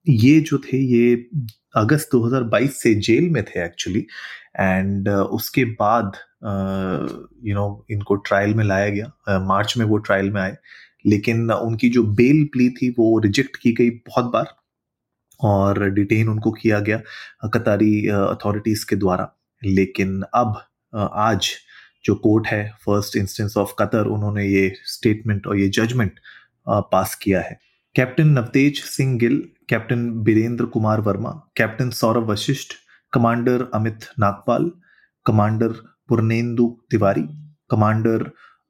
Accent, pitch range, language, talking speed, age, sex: native, 105-120 Hz, Hindi, 135 wpm, 30-49, male